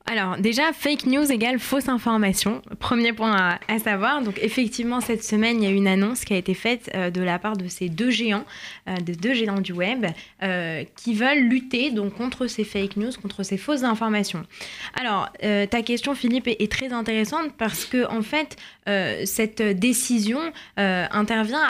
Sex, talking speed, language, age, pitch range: female, 195 wpm, French, 20-39, 195-255 Hz